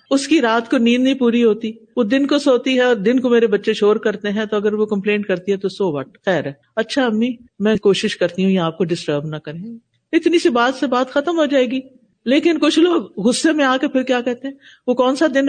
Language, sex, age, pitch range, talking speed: Urdu, female, 50-69, 200-260 Hz, 260 wpm